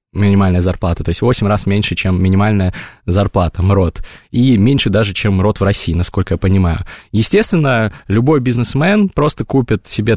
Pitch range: 100-130 Hz